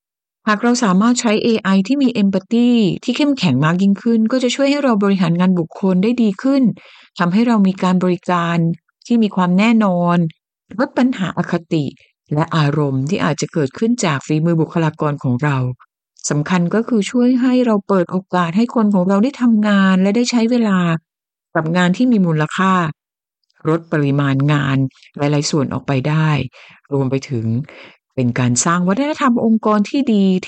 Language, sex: Thai, female